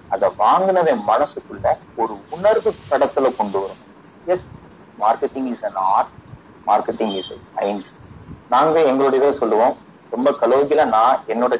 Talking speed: 90 wpm